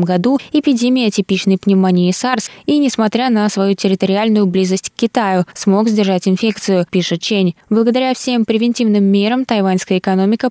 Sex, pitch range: female, 185-225 Hz